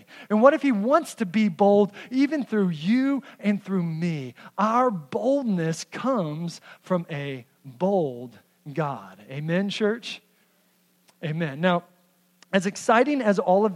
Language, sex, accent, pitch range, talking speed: English, male, American, 170-230 Hz, 130 wpm